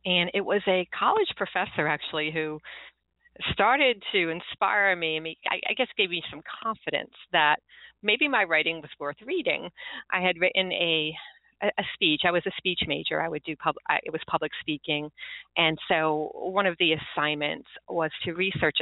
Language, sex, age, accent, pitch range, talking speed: English, female, 40-59, American, 155-195 Hz, 180 wpm